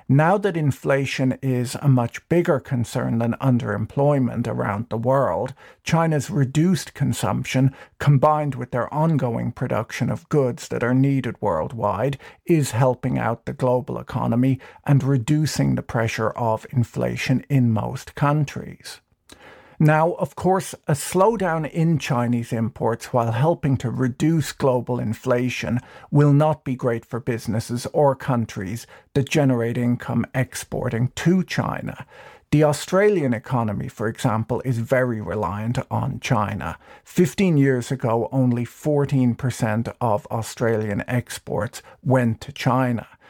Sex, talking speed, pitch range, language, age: male, 125 wpm, 115-140 Hz, English, 50-69